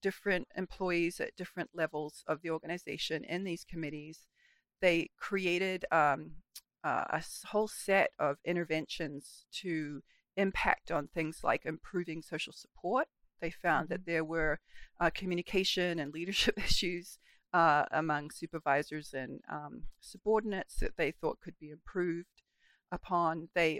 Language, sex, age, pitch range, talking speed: English, female, 40-59, 160-190 Hz, 130 wpm